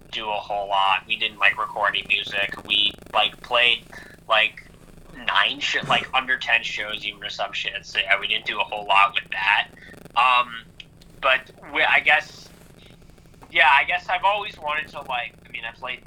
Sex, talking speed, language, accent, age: male, 185 wpm, English, American, 20-39